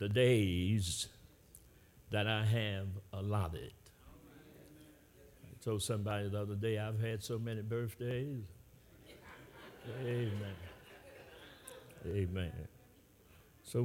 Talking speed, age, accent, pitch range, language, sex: 85 wpm, 60-79, American, 100-125 Hz, English, male